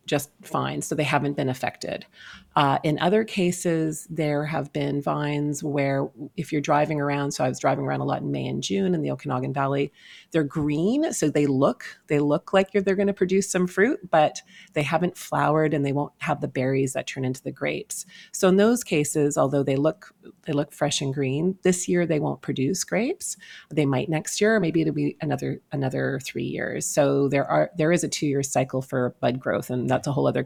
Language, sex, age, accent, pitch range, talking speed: English, female, 30-49, American, 140-180 Hz, 220 wpm